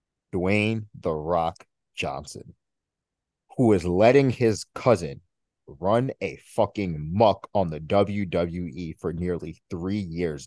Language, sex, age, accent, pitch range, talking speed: English, male, 30-49, American, 100-135 Hz, 115 wpm